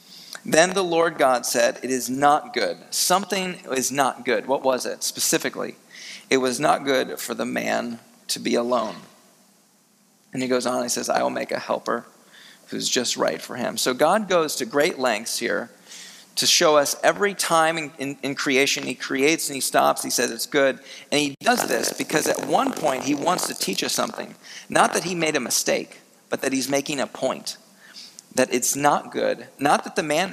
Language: English